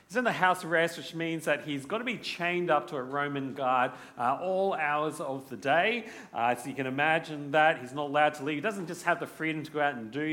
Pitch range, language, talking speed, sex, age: 140-180 Hz, English, 265 wpm, male, 40-59